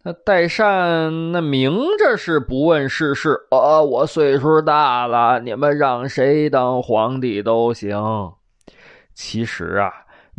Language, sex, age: Chinese, male, 20-39